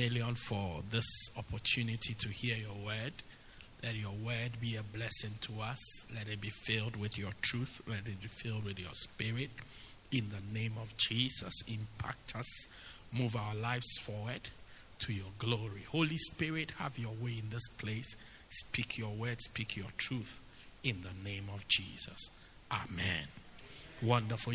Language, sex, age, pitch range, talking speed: English, male, 50-69, 110-135 Hz, 155 wpm